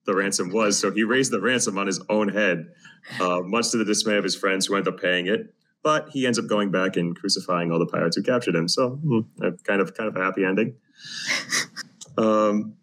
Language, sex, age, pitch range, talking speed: English, male, 30-49, 90-105 Hz, 230 wpm